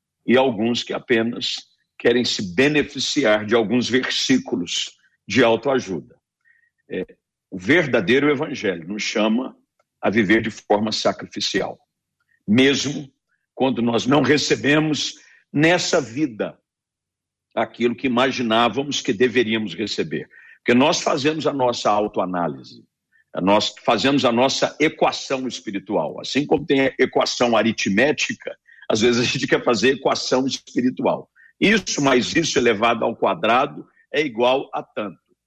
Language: Portuguese